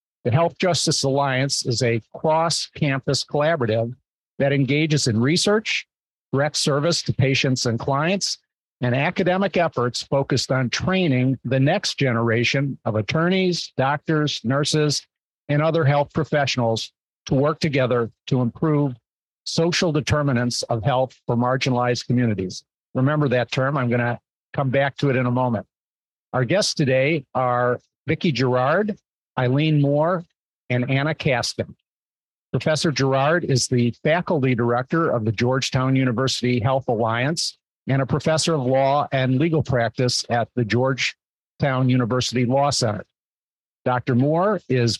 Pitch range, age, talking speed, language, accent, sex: 125-150 Hz, 50-69, 130 wpm, English, American, male